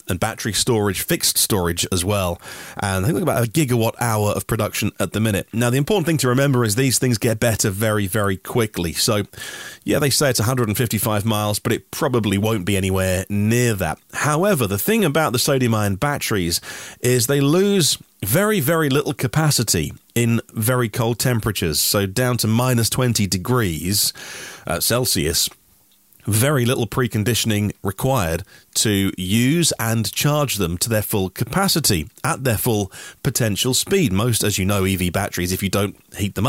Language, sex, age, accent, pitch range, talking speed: English, male, 30-49, British, 100-130 Hz, 170 wpm